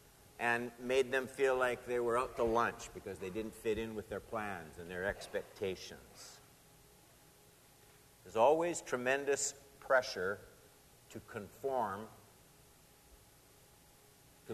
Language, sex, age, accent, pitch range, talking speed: English, male, 50-69, American, 120-160 Hz, 115 wpm